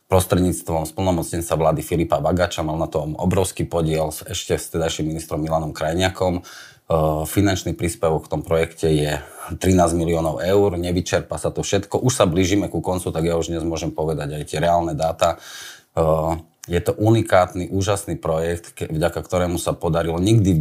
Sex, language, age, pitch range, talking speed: male, Slovak, 30-49, 80-90 Hz, 160 wpm